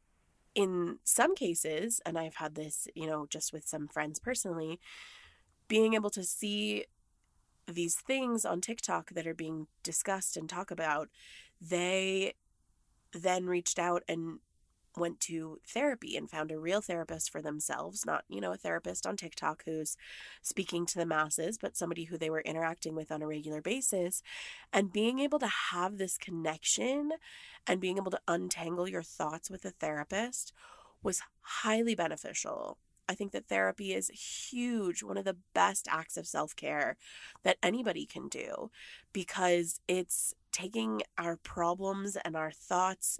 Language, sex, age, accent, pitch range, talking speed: English, female, 20-39, American, 160-200 Hz, 155 wpm